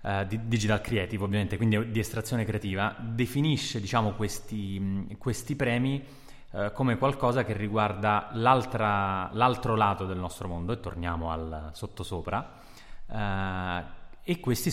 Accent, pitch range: native, 95-120 Hz